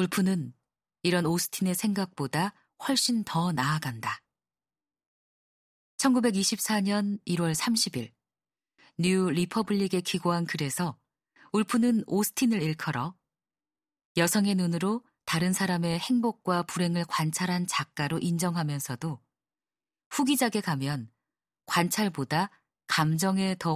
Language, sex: Korean, female